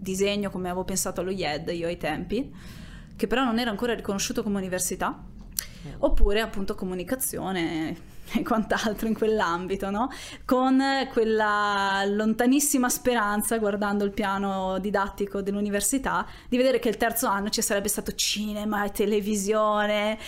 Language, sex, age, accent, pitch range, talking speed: Italian, female, 20-39, native, 200-240 Hz, 135 wpm